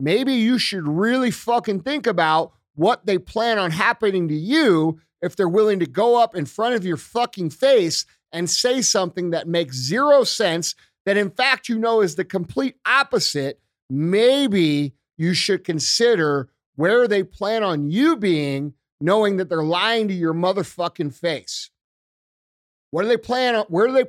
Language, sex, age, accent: English, male, 40-59, American